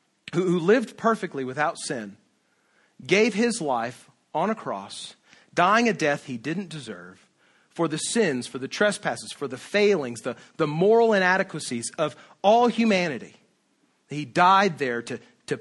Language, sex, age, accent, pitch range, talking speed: English, male, 40-59, American, 150-195 Hz, 145 wpm